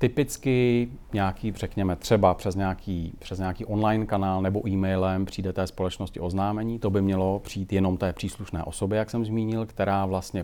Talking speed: 165 wpm